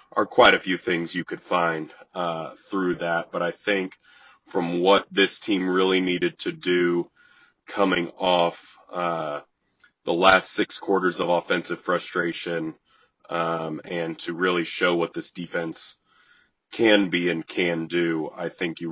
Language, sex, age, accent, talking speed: English, male, 30-49, American, 150 wpm